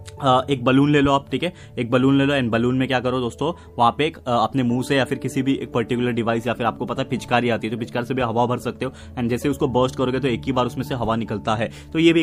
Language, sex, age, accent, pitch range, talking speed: Marathi, male, 20-39, native, 115-135 Hz, 310 wpm